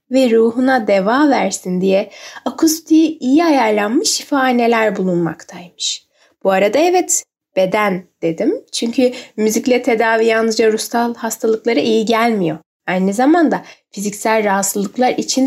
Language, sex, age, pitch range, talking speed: Turkish, female, 10-29, 205-270 Hz, 110 wpm